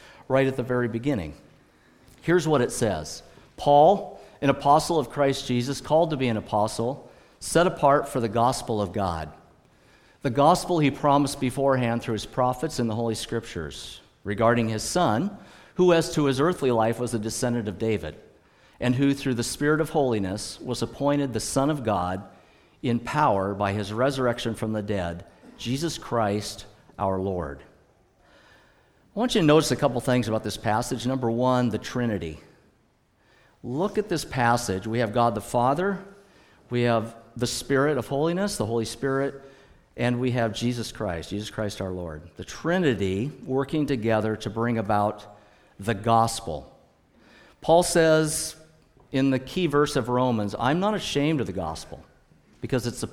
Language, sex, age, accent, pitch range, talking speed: English, male, 50-69, American, 105-140 Hz, 165 wpm